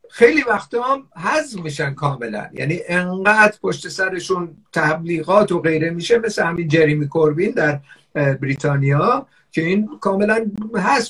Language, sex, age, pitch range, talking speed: Persian, male, 50-69, 155-200 Hz, 125 wpm